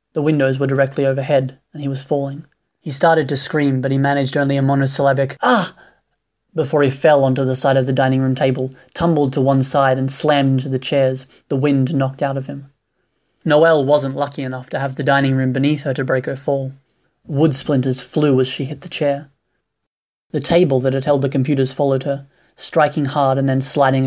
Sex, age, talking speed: male, 20-39, 205 wpm